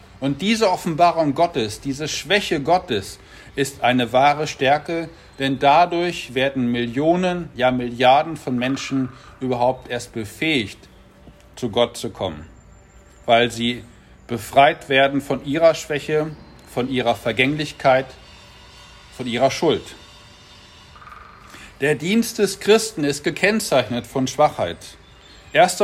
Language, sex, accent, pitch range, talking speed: German, male, German, 125-170 Hz, 110 wpm